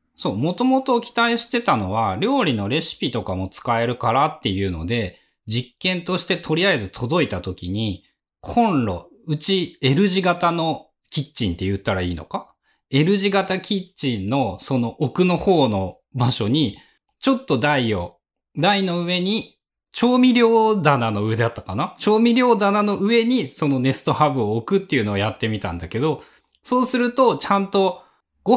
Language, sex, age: Japanese, male, 20-39